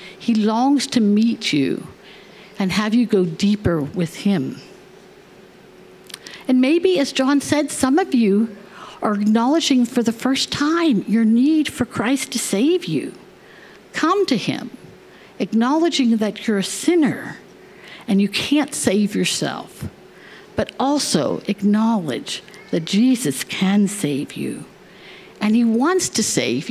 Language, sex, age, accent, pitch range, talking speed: English, female, 60-79, American, 195-270 Hz, 135 wpm